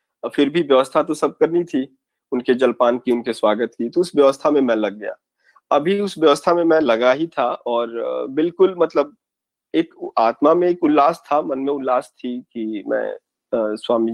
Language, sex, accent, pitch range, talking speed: Hindi, male, native, 120-155 Hz, 185 wpm